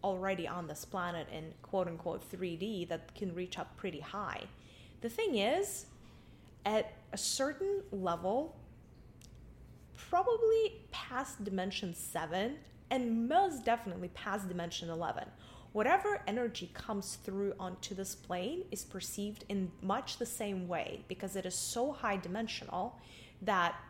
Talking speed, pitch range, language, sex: 130 wpm, 180-235 Hz, English, female